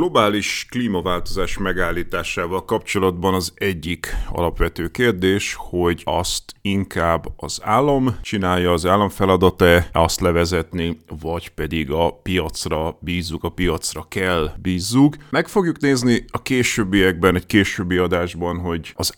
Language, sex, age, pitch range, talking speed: Hungarian, male, 30-49, 85-100 Hz, 120 wpm